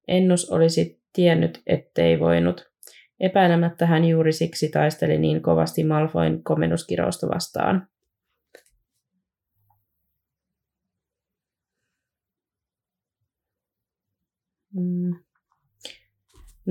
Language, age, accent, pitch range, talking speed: Finnish, 20-39, native, 150-175 Hz, 55 wpm